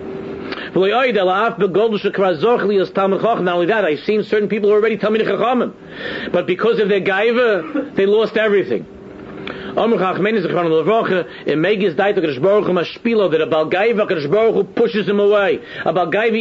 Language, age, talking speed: English, 50-69, 100 wpm